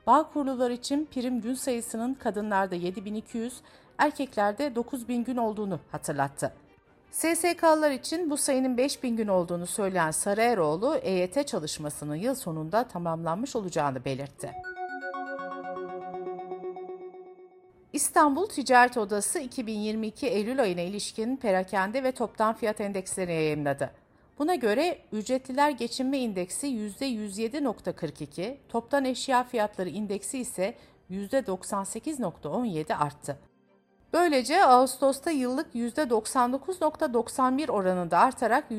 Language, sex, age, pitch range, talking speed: Turkish, female, 50-69, 180-270 Hz, 95 wpm